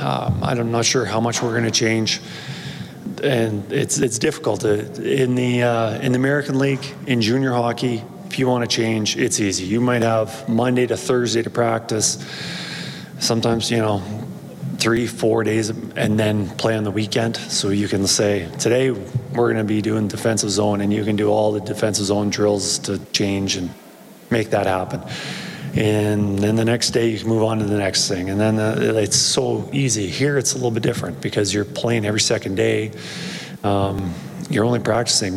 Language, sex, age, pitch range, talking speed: English, male, 30-49, 105-125 Hz, 195 wpm